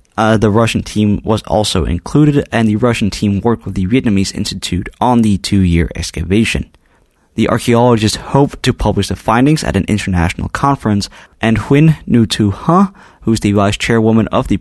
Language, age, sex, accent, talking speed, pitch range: English, 20-39, male, American, 175 wpm, 95-115 Hz